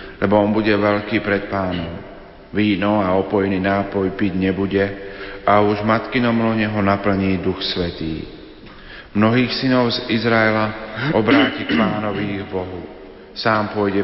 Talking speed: 130 wpm